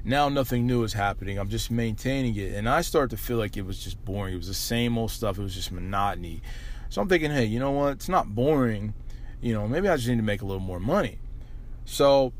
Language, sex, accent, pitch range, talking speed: English, male, American, 105-125 Hz, 250 wpm